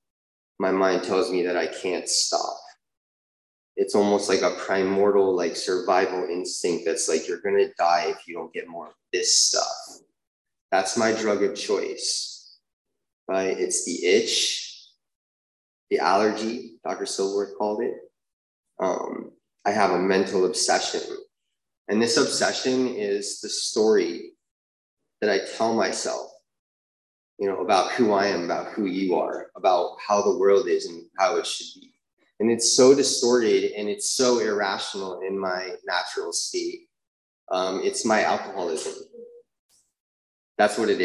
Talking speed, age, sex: 145 wpm, 20-39, male